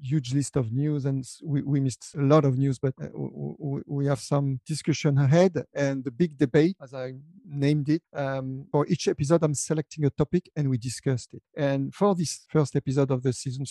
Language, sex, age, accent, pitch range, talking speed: English, male, 50-69, French, 135-160 Hz, 200 wpm